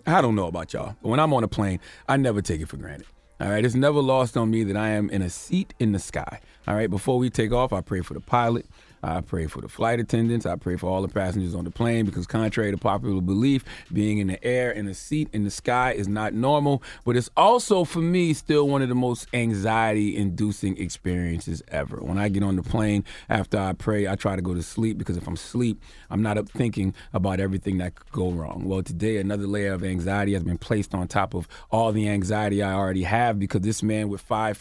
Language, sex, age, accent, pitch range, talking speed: English, male, 30-49, American, 100-125 Hz, 245 wpm